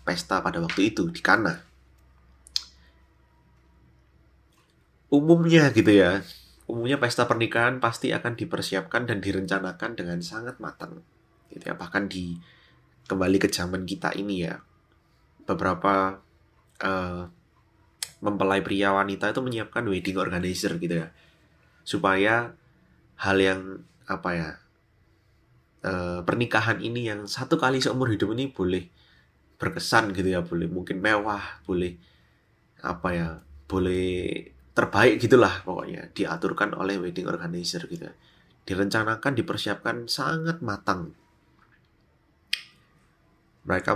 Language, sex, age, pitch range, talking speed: Indonesian, male, 20-39, 90-110 Hz, 110 wpm